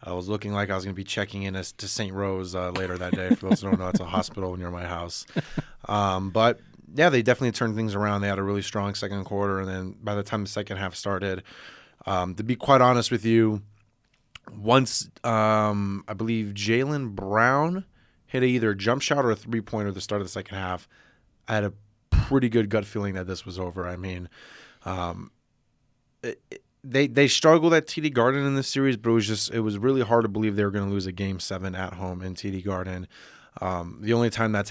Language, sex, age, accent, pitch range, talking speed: English, male, 20-39, American, 95-110 Hz, 235 wpm